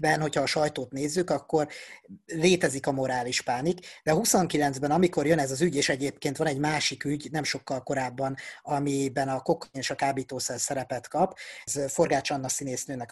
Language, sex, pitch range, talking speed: Hungarian, male, 135-165 Hz, 175 wpm